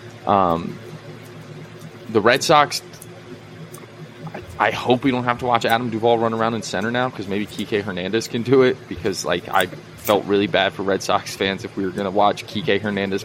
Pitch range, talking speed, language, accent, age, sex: 100-130 Hz, 200 wpm, English, American, 20-39, male